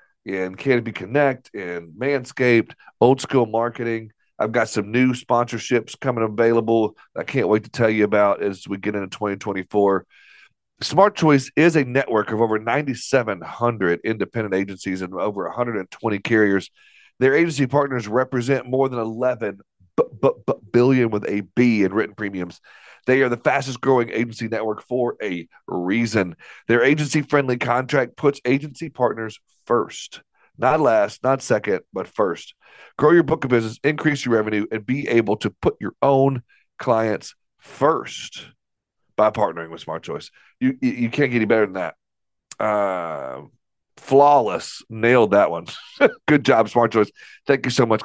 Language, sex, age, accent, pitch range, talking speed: English, male, 40-59, American, 105-135 Hz, 155 wpm